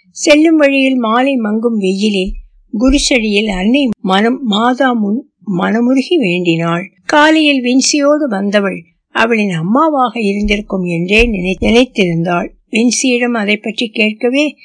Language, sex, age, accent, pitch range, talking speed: Tamil, female, 60-79, native, 195-260 Hz, 95 wpm